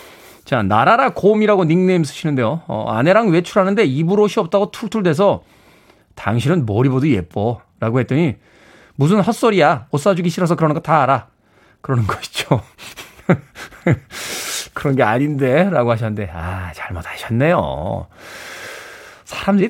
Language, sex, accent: Korean, male, native